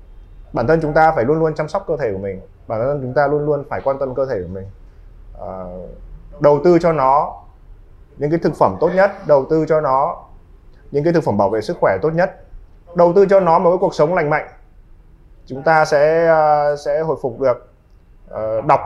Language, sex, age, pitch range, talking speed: Vietnamese, male, 20-39, 95-155 Hz, 215 wpm